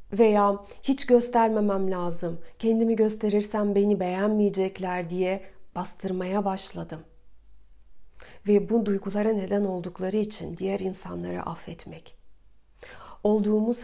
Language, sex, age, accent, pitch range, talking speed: Turkish, female, 40-59, native, 185-220 Hz, 90 wpm